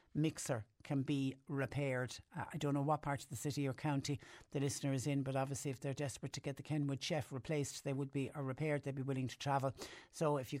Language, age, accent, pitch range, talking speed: English, 60-79, Irish, 135-155 Hz, 245 wpm